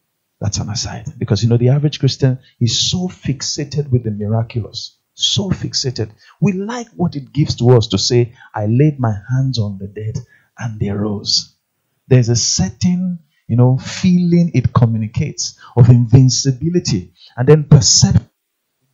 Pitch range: 110-145 Hz